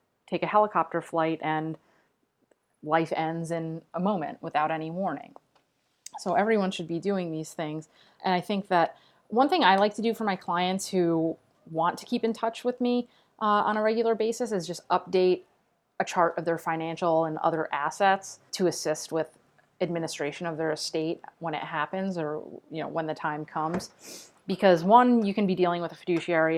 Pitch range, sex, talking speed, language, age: 160-190 Hz, female, 185 wpm, English, 30-49